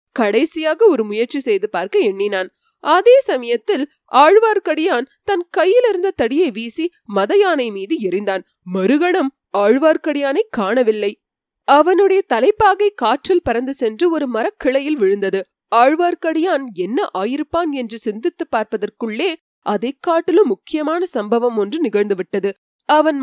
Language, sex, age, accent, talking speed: Tamil, female, 20-39, native, 105 wpm